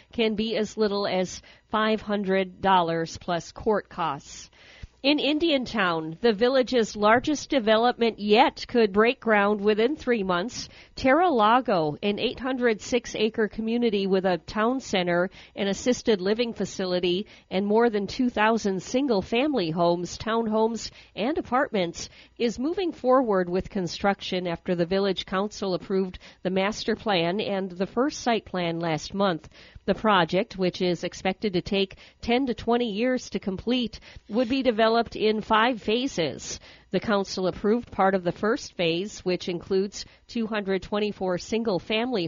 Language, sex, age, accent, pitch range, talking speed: English, female, 50-69, American, 185-230 Hz, 135 wpm